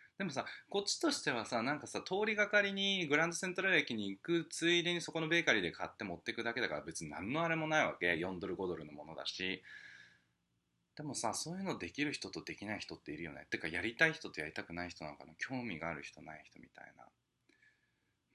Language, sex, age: Japanese, male, 20-39